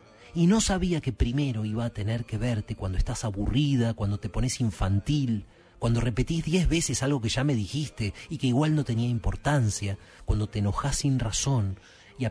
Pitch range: 100-135 Hz